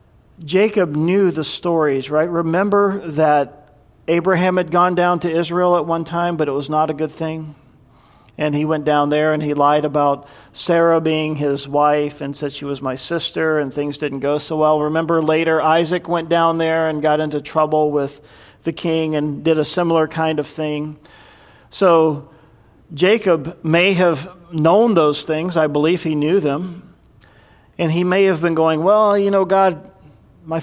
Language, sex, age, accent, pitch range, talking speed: English, male, 50-69, American, 150-170 Hz, 180 wpm